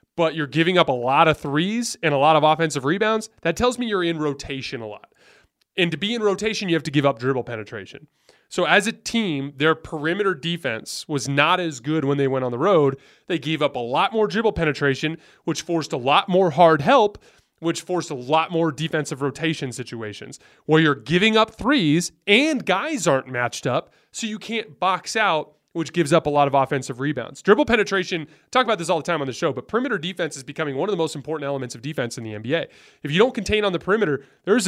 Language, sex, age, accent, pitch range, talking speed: English, male, 20-39, American, 140-185 Hz, 230 wpm